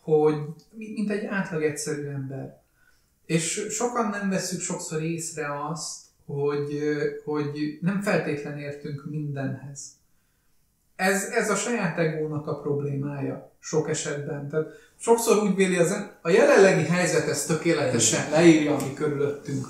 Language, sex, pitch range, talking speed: Hungarian, male, 145-175 Hz, 125 wpm